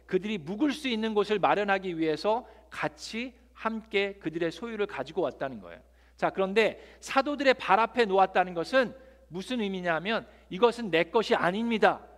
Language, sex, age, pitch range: Korean, male, 50-69, 160-220 Hz